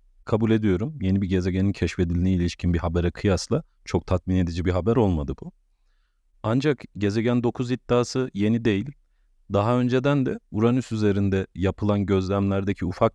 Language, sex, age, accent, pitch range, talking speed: Turkish, male, 40-59, native, 90-115 Hz, 140 wpm